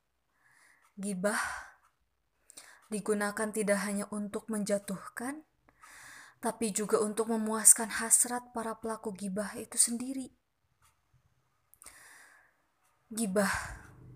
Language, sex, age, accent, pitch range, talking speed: Indonesian, female, 20-39, native, 200-230 Hz, 70 wpm